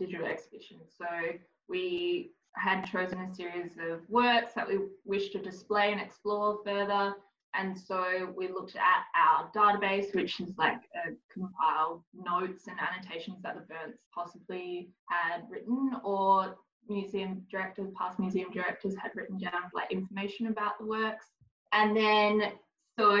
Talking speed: 145 wpm